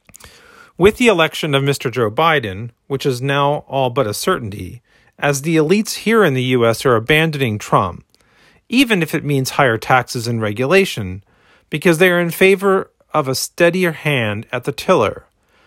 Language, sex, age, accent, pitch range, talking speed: English, male, 40-59, American, 125-165 Hz, 170 wpm